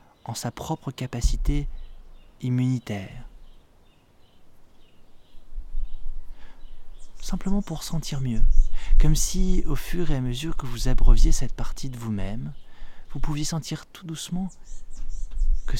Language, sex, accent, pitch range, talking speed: French, male, French, 110-150 Hz, 110 wpm